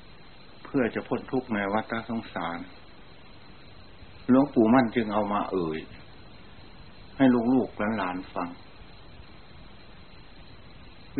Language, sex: Thai, male